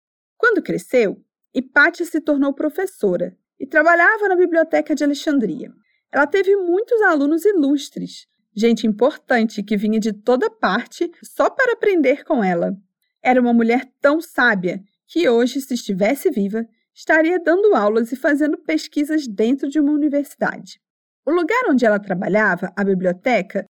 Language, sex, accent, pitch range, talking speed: Portuguese, female, Brazilian, 220-330 Hz, 140 wpm